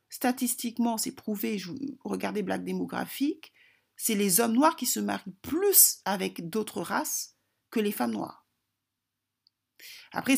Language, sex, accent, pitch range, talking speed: French, female, French, 195-250 Hz, 125 wpm